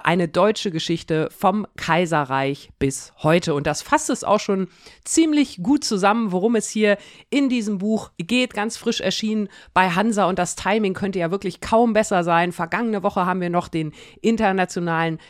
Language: German